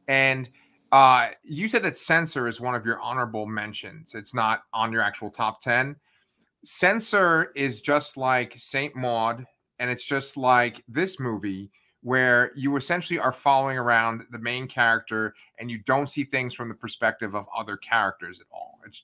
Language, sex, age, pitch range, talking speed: English, male, 30-49, 115-140 Hz, 170 wpm